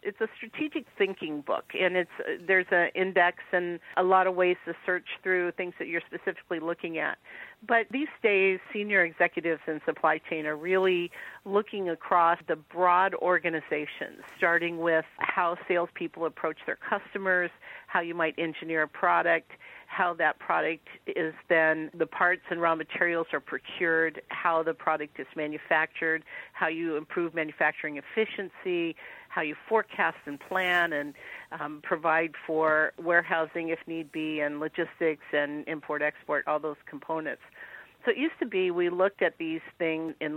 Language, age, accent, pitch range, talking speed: English, 50-69, American, 160-185 Hz, 155 wpm